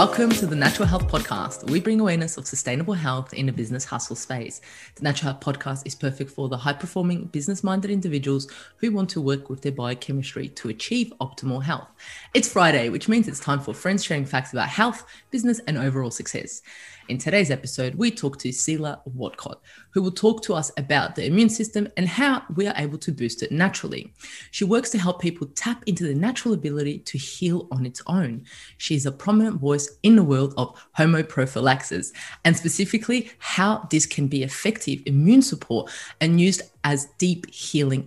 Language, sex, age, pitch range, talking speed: English, female, 20-39, 135-195 Hz, 190 wpm